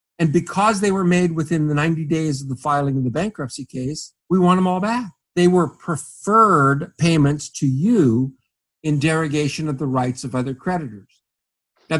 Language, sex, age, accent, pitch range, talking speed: English, male, 50-69, American, 145-200 Hz, 180 wpm